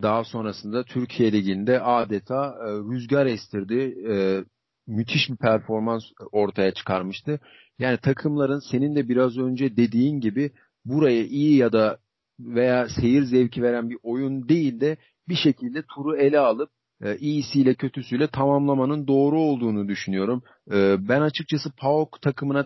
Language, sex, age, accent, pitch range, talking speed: Turkish, male, 40-59, native, 120-145 Hz, 135 wpm